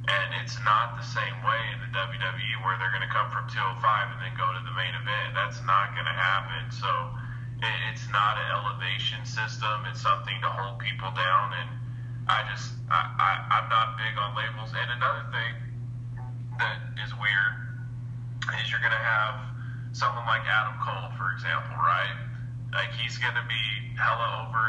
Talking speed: 175 wpm